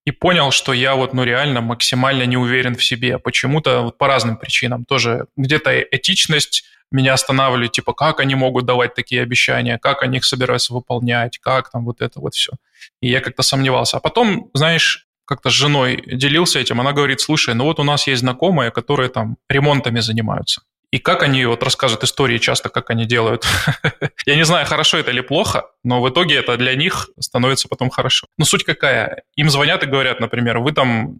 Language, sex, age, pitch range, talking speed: Russian, male, 20-39, 125-145 Hz, 190 wpm